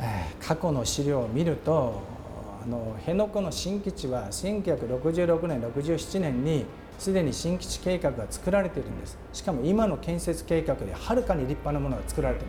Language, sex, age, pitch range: Japanese, male, 50-69, 135-180 Hz